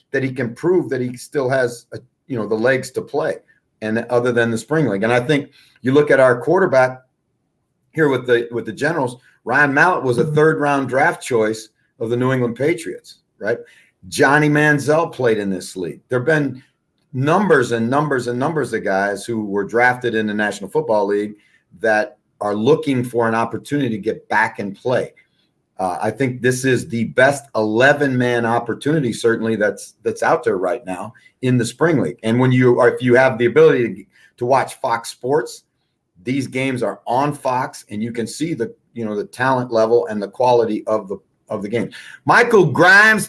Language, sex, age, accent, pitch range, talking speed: English, male, 40-59, American, 120-155 Hz, 195 wpm